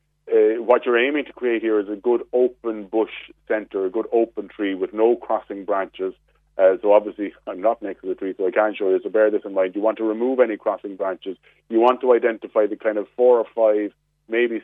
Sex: male